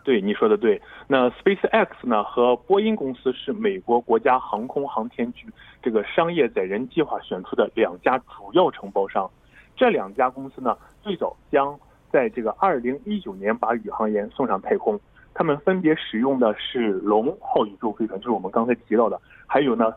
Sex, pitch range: male, 130-210 Hz